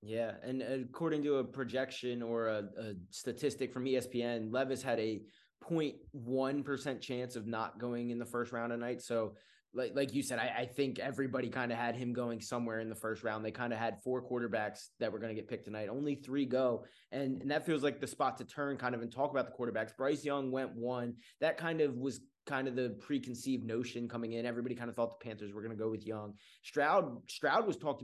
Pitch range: 115-135 Hz